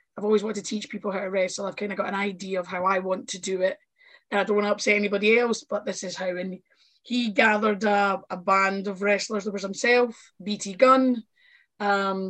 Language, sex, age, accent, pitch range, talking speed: English, female, 20-39, British, 200-235 Hz, 235 wpm